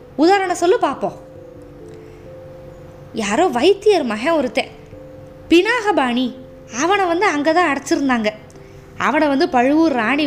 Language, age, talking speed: Tamil, 20-39, 100 wpm